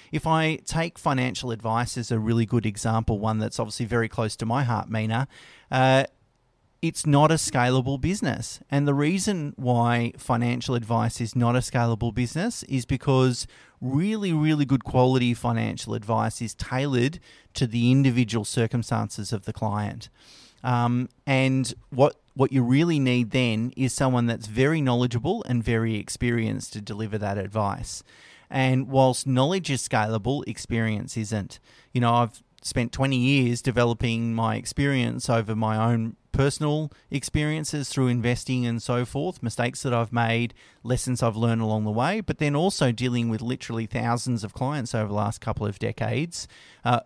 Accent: Australian